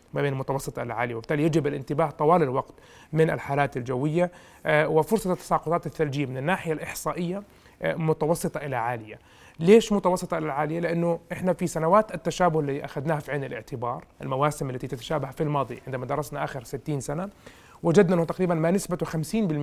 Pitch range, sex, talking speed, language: 140-175 Hz, male, 160 wpm, Arabic